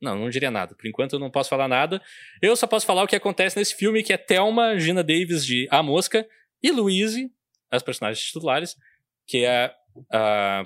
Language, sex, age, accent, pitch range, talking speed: Portuguese, male, 20-39, Brazilian, 150-200 Hz, 205 wpm